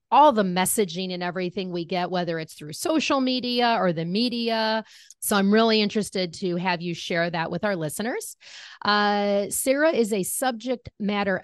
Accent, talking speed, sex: American, 175 wpm, female